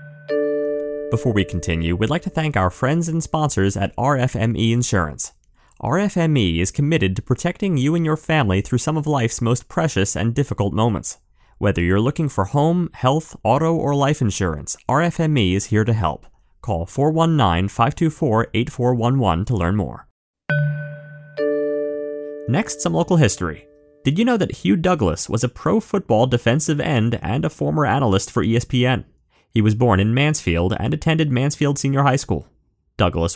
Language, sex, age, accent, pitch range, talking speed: English, male, 30-49, American, 100-150 Hz, 155 wpm